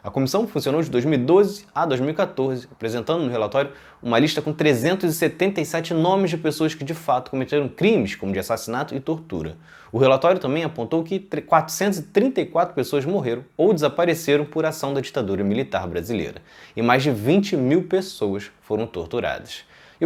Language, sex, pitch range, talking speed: Portuguese, male, 135-185 Hz, 155 wpm